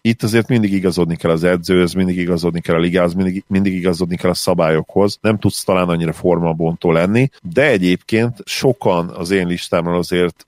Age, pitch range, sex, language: 40-59, 90-100 Hz, male, Hungarian